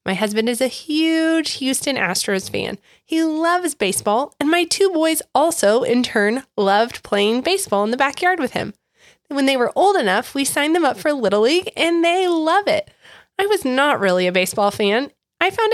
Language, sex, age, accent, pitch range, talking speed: English, female, 20-39, American, 225-345 Hz, 195 wpm